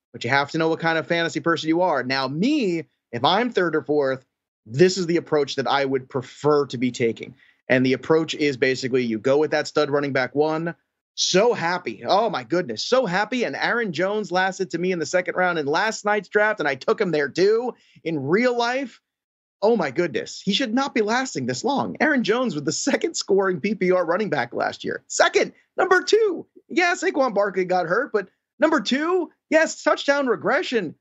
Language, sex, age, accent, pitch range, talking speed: English, male, 30-49, American, 160-255 Hz, 210 wpm